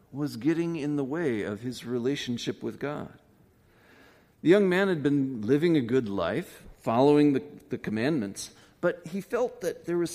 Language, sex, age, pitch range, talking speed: English, male, 50-69, 115-165 Hz, 170 wpm